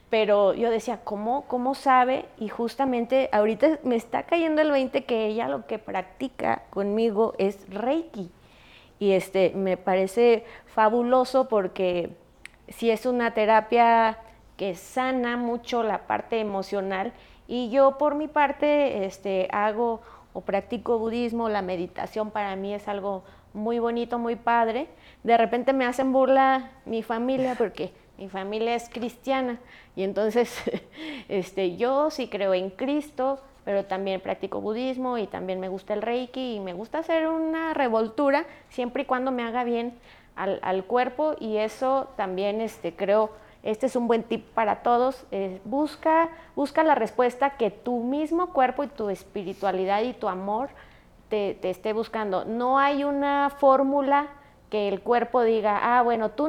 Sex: female